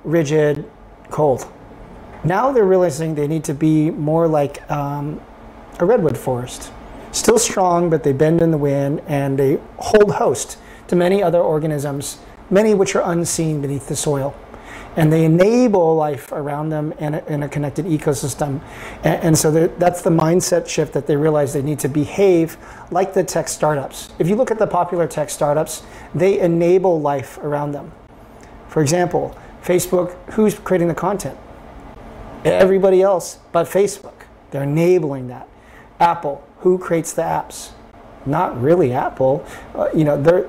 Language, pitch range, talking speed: English, 145-175 Hz, 155 wpm